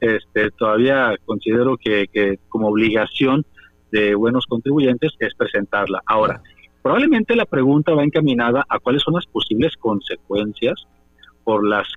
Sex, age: male, 40-59